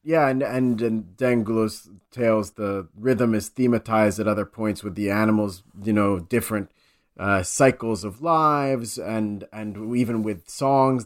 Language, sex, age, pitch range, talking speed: English, male, 30-49, 110-140 Hz, 150 wpm